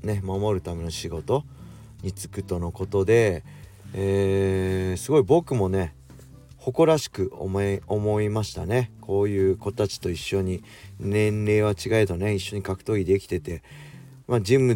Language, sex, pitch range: Japanese, male, 95-115 Hz